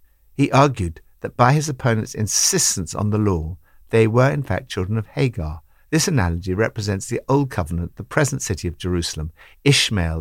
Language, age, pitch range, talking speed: English, 60-79, 85-125 Hz, 170 wpm